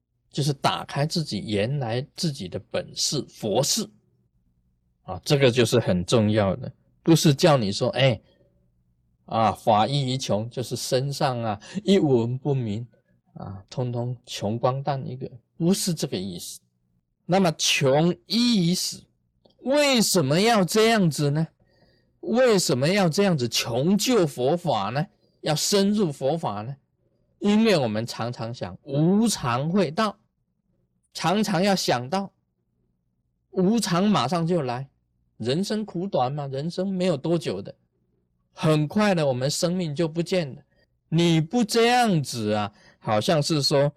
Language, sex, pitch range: Chinese, male, 120-185 Hz